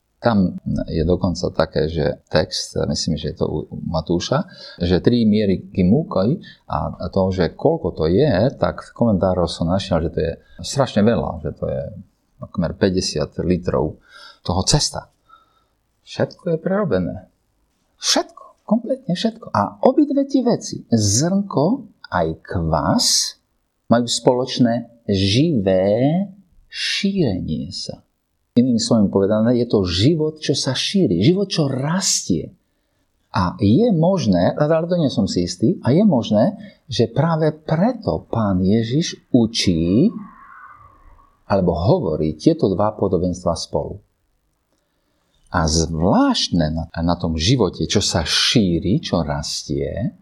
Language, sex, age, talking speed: Slovak, male, 40-59, 120 wpm